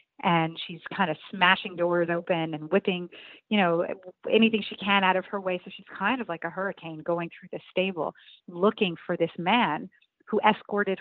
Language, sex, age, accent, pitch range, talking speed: English, female, 30-49, American, 175-215 Hz, 190 wpm